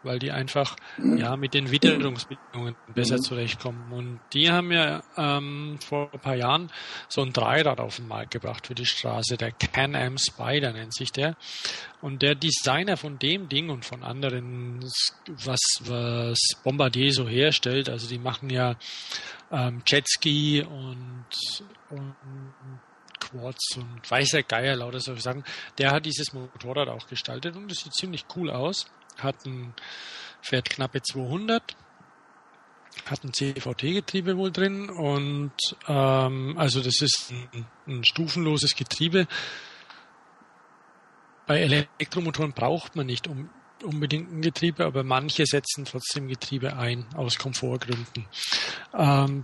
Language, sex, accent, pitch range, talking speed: German, male, German, 125-150 Hz, 135 wpm